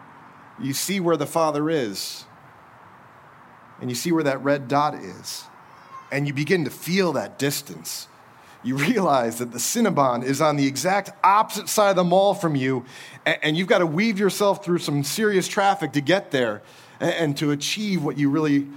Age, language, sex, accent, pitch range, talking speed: 30-49, English, male, American, 145-205 Hz, 180 wpm